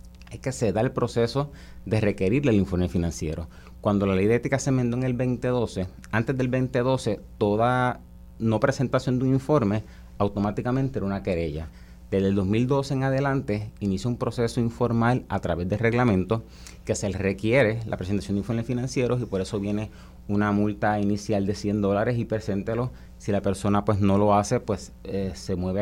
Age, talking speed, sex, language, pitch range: 30-49, 180 wpm, male, Spanish, 95-120 Hz